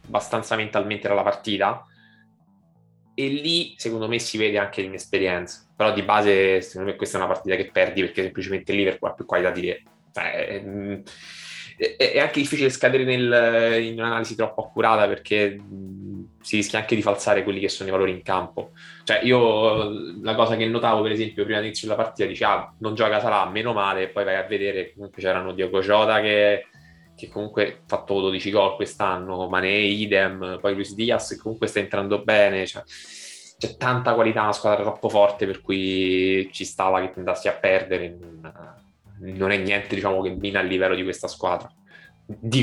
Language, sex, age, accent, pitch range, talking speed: Italian, male, 20-39, native, 95-115 Hz, 185 wpm